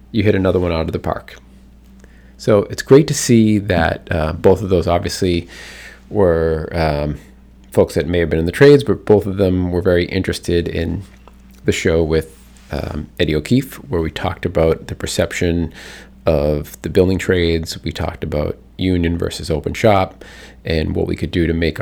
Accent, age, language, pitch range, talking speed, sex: American, 40-59, English, 80-105 Hz, 185 wpm, male